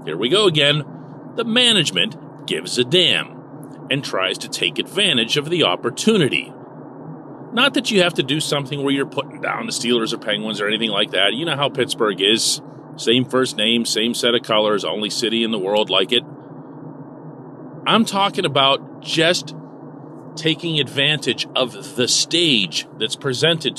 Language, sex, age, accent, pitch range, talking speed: English, male, 40-59, American, 140-180 Hz, 165 wpm